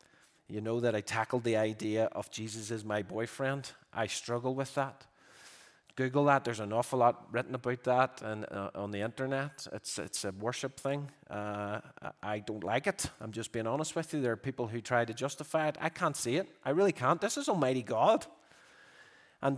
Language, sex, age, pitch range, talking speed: English, male, 30-49, 125-160 Hz, 200 wpm